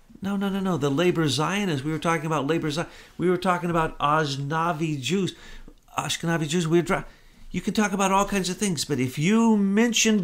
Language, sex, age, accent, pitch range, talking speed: English, male, 50-69, American, 115-170 Hz, 205 wpm